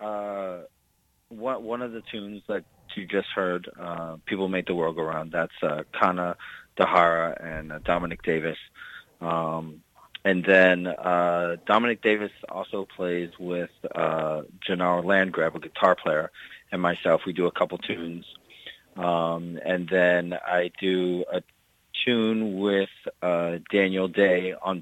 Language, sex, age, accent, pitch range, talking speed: English, male, 30-49, American, 85-95 Hz, 145 wpm